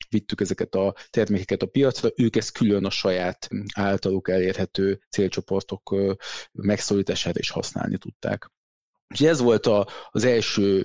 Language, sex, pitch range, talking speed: Hungarian, male, 100-120 Hz, 135 wpm